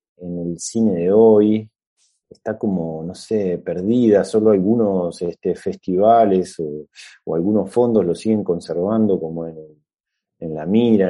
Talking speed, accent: 135 wpm, Argentinian